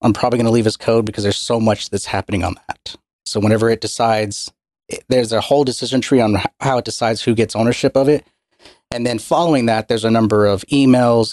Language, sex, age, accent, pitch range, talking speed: English, male, 30-49, American, 105-125 Hz, 215 wpm